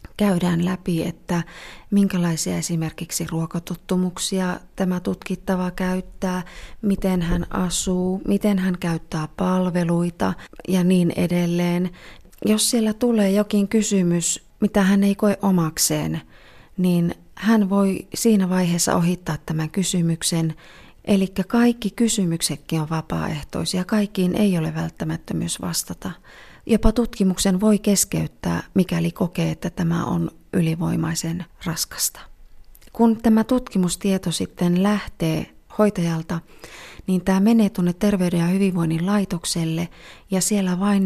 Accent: native